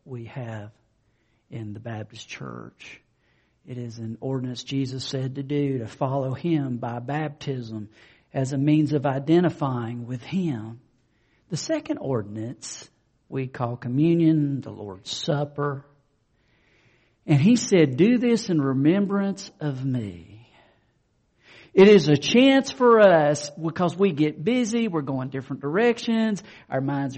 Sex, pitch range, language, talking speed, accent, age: male, 115-175 Hz, English, 130 wpm, American, 50-69